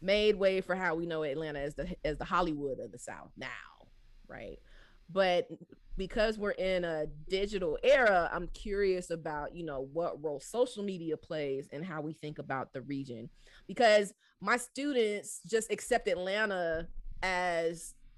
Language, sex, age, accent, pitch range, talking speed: English, female, 20-39, American, 160-210 Hz, 160 wpm